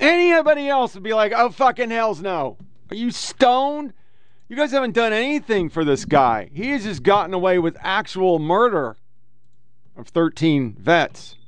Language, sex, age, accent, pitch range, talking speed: English, male, 40-59, American, 135-210 Hz, 155 wpm